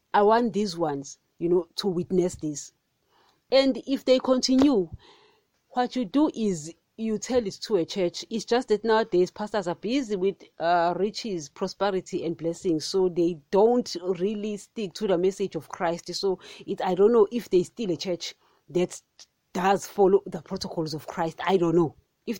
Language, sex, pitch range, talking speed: English, female, 180-235 Hz, 180 wpm